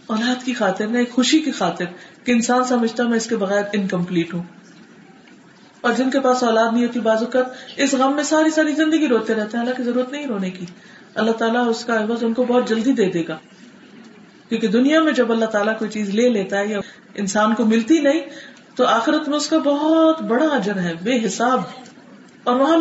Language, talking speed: Urdu, 215 wpm